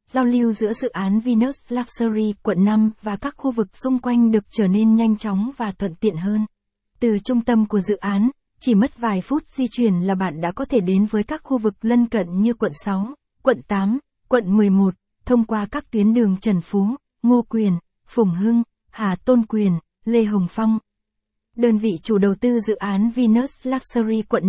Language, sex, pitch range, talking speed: Vietnamese, female, 200-235 Hz, 200 wpm